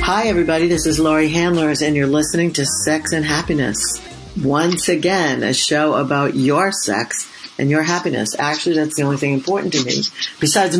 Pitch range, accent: 145-175 Hz, American